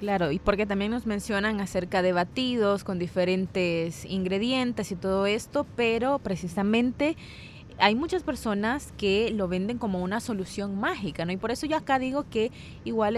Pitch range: 180-220 Hz